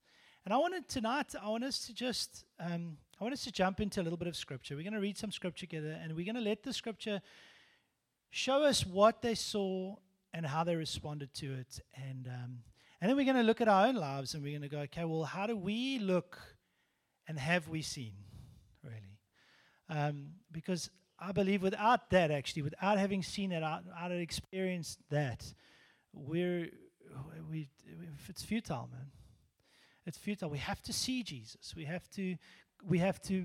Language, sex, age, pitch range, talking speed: English, male, 30-49, 145-205 Hz, 195 wpm